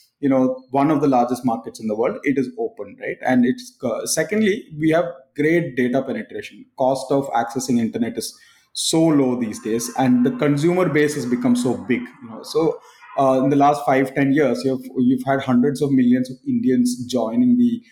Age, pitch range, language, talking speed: 20-39, 125-160 Hz, English, 200 wpm